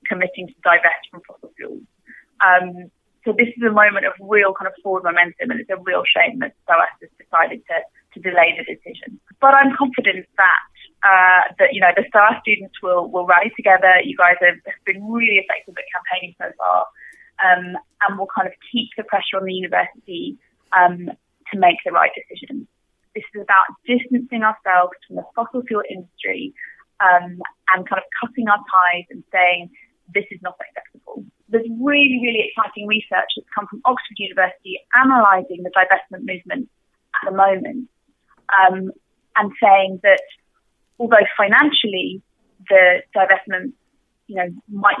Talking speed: 165 wpm